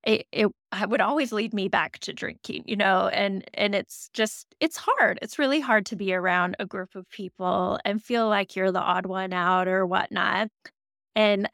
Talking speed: 200 wpm